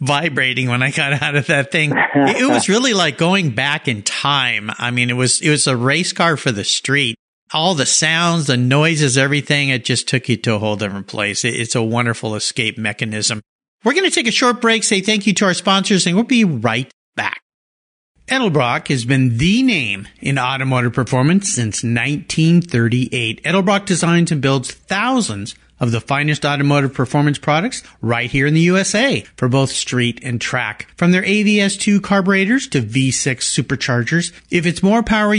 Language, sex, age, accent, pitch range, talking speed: English, male, 50-69, American, 125-195 Hz, 185 wpm